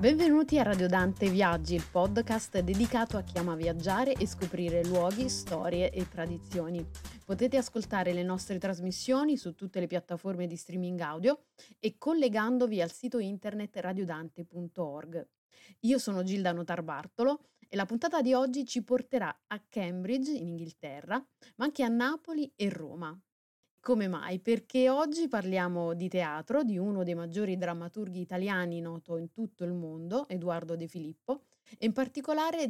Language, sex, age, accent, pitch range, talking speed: Italian, female, 30-49, native, 175-235 Hz, 150 wpm